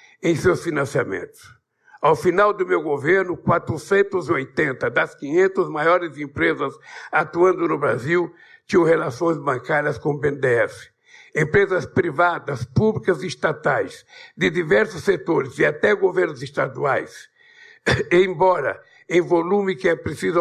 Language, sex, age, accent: Portuguese, male, 60-79, Brazilian